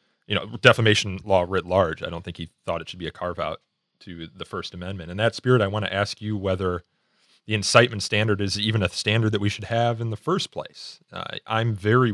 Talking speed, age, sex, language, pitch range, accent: 230 wpm, 30-49, male, English, 90-110 Hz, American